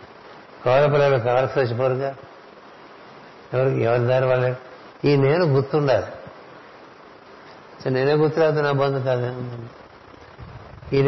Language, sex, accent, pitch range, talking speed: Telugu, male, native, 120-140 Hz, 95 wpm